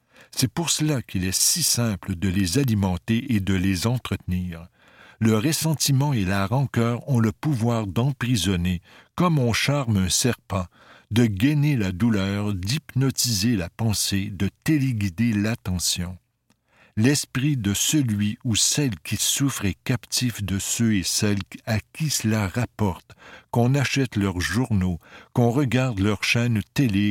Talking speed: 140 wpm